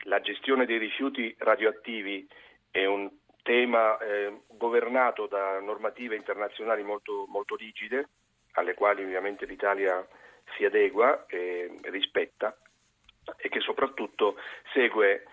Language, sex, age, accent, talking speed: Italian, male, 40-59, native, 110 wpm